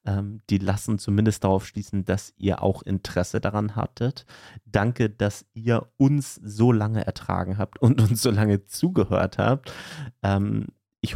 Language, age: German, 30-49